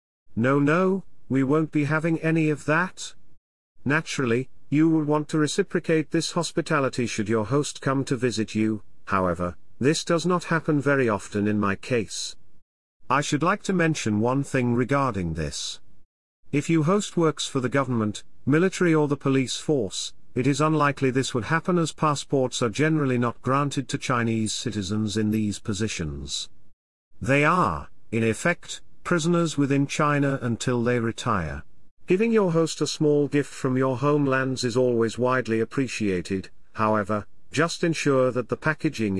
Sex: male